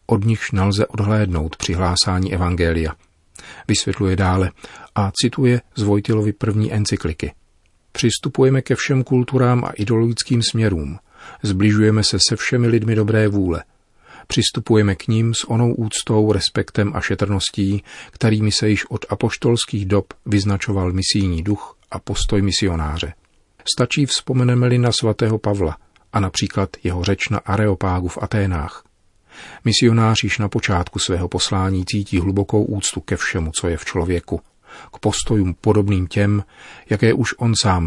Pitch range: 95-110 Hz